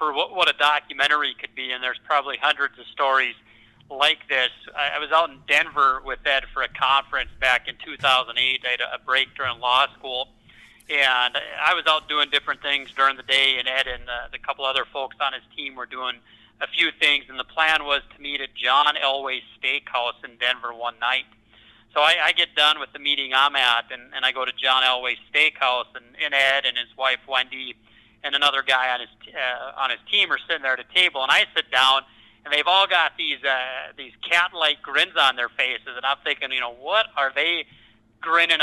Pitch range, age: 125-150 Hz, 40-59